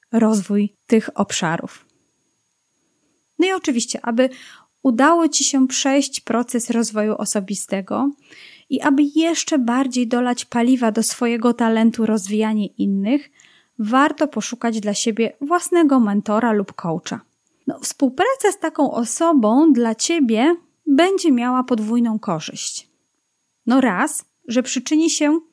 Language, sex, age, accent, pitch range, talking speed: Polish, female, 30-49, native, 225-290 Hz, 115 wpm